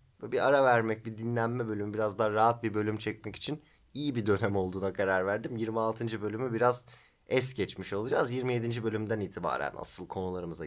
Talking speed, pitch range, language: 170 wpm, 95-130 Hz, Turkish